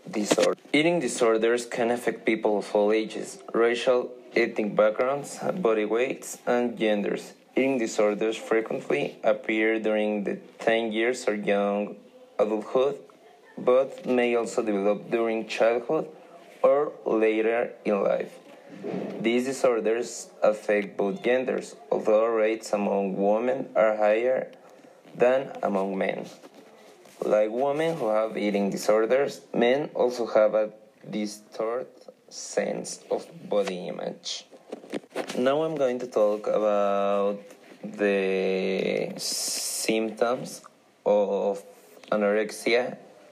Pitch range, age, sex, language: 105-125 Hz, 20-39, male, English